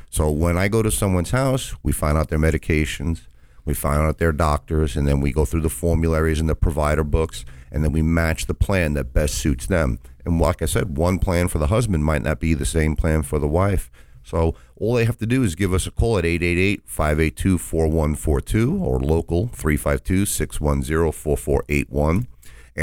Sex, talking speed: male, 190 wpm